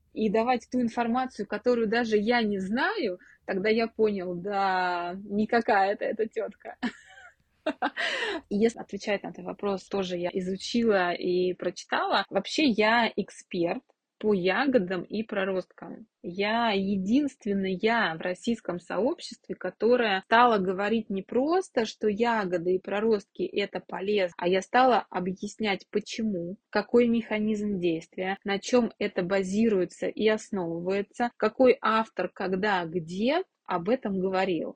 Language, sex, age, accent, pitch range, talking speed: Russian, female, 20-39, native, 190-225 Hz, 125 wpm